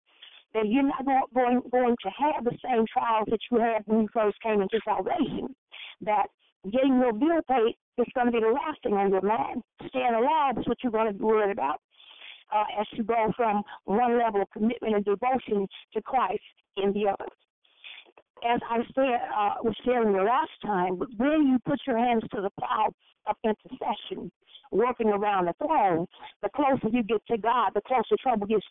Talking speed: 195 wpm